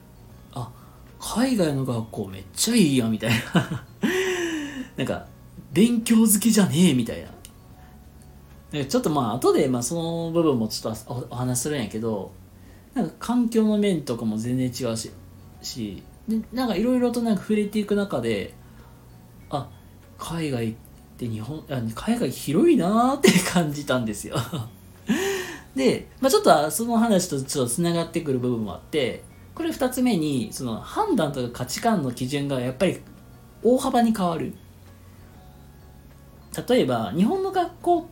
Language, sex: Japanese, male